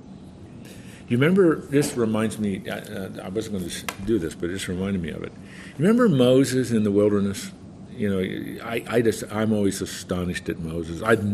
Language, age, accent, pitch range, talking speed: English, 50-69, American, 100-170 Hz, 185 wpm